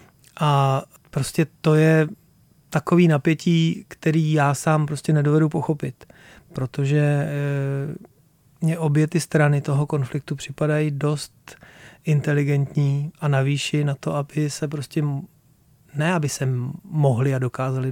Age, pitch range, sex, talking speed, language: 30-49, 140-155 Hz, male, 120 wpm, Czech